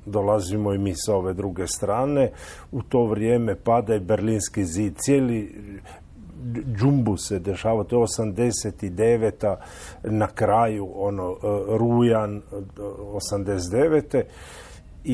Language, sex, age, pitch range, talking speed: Croatian, male, 50-69, 95-120 Hz, 105 wpm